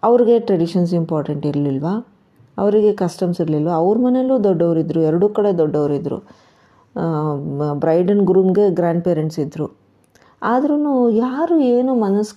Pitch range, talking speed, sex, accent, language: 170-205 Hz, 110 wpm, female, native, Kannada